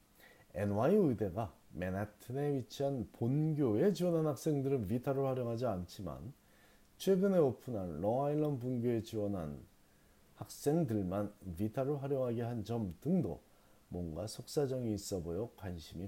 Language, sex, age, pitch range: Korean, male, 40-59, 95-140 Hz